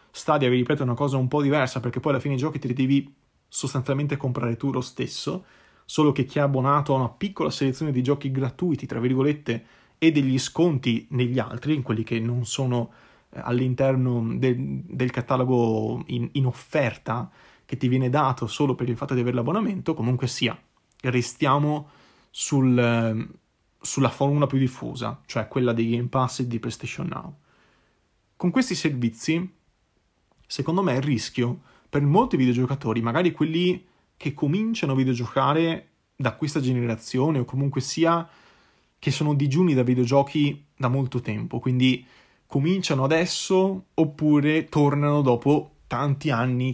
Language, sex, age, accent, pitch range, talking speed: Italian, male, 30-49, native, 125-150 Hz, 155 wpm